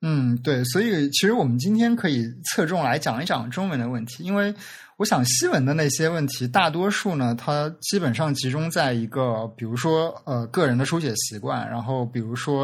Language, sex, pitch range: Chinese, male, 125-160 Hz